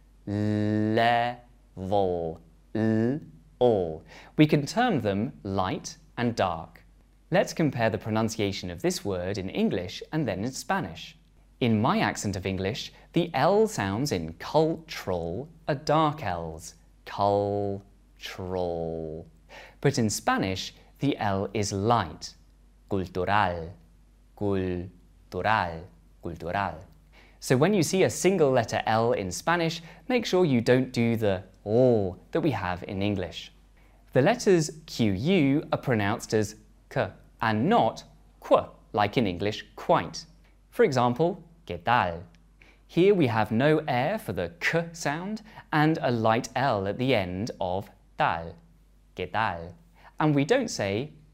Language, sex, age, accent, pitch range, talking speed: English, male, 20-39, British, 85-130 Hz, 125 wpm